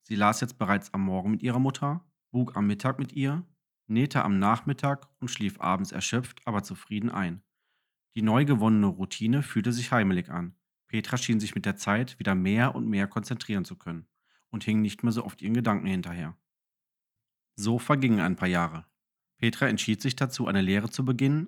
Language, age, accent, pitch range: German, 40-59, German, 100-135 Hz